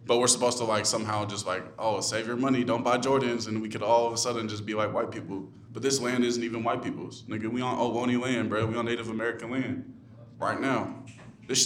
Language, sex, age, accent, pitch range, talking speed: English, male, 20-39, American, 110-125 Hz, 245 wpm